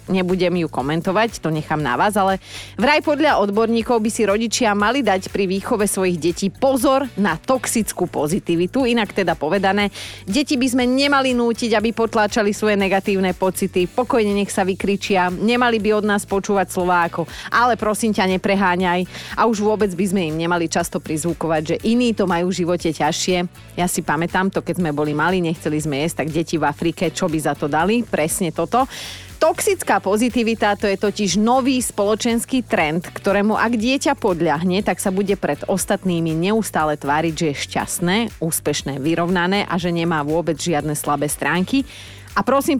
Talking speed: 170 wpm